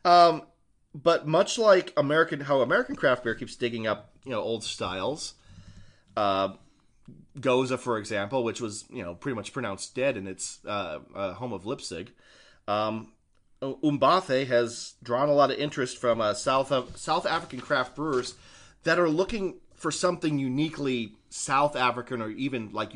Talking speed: 160 wpm